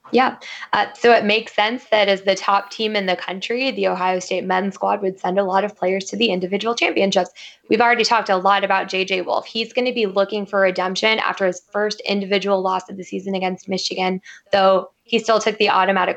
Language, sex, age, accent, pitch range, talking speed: English, female, 10-29, American, 185-205 Hz, 225 wpm